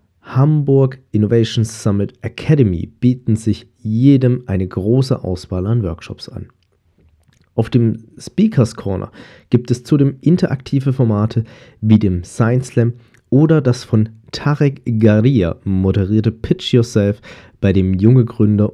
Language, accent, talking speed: German, German, 120 wpm